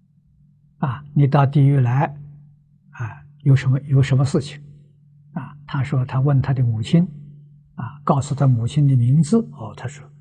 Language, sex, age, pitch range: Chinese, male, 60-79, 135-165 Hz